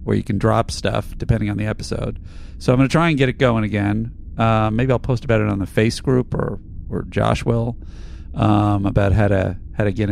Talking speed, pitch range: 235 wpm, 90-120 Hz